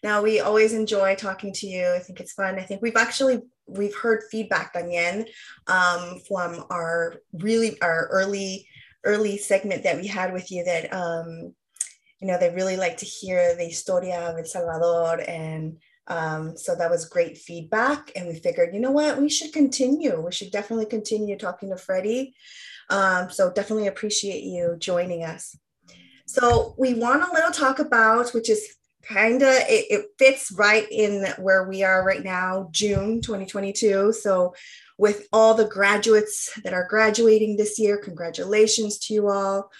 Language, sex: English, female